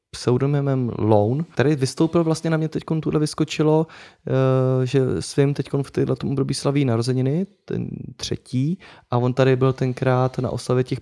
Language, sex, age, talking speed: Czech, male, 20-39, 150 wpm